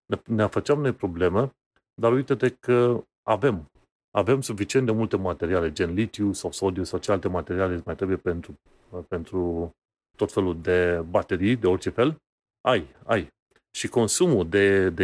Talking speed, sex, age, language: 150 wpm, male, 30-49, Romanian